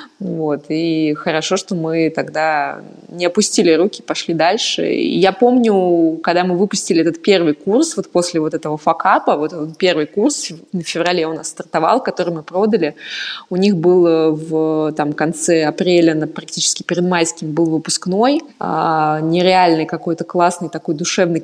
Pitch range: 160-210 Hz